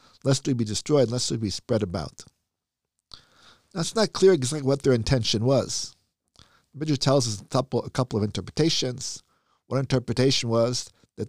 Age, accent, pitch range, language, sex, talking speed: 50-69, American, 105-145 Hz, English, male, 170 wpm